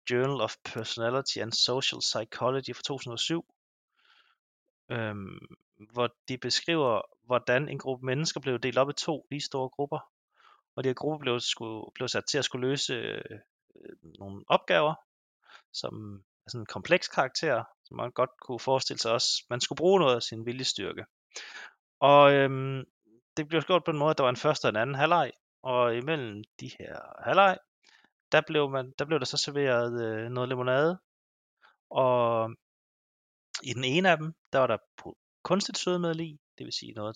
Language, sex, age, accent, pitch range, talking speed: Danish, male, 30-49, native, 115-145 Hz, 180 wpm